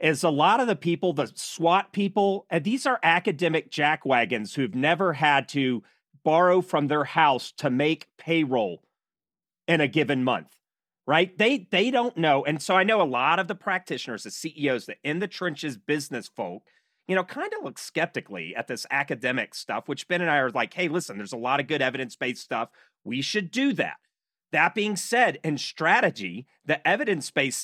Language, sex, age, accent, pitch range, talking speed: English, male, 40-59, American, 145-205 Hz, 185 wpm